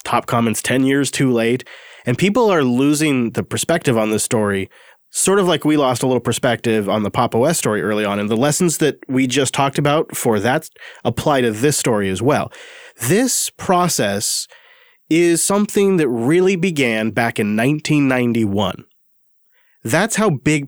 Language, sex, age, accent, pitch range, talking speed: English, male, 30-49, American, 115-165 Hz, 170 wpm